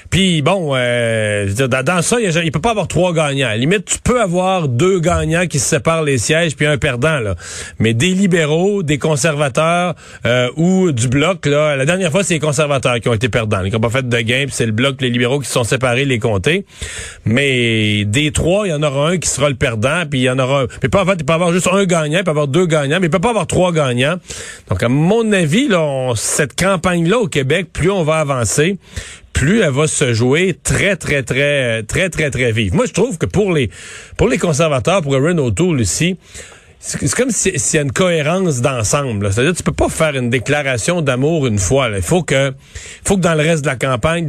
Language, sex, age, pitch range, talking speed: French, male, 40-59, 125-175 Hz, 245 wpm